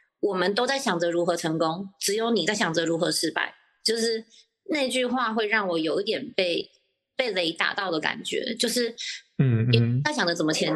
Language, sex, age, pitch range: Chinese, female, 30-49, 175-220 Hz